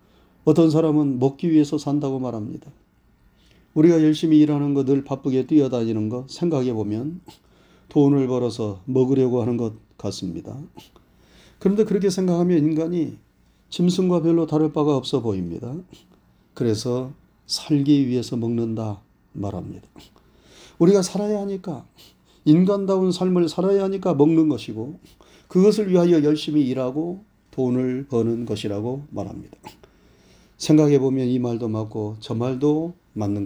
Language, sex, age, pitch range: Korean, male, 40-59, 125-170 Hz